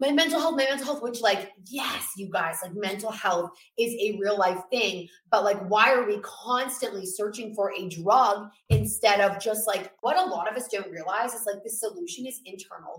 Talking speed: 210 wpm